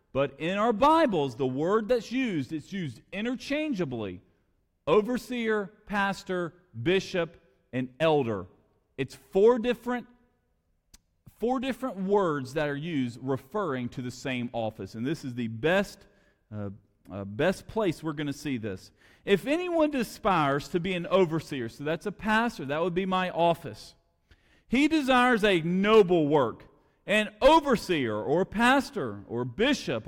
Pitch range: 130-215 Hz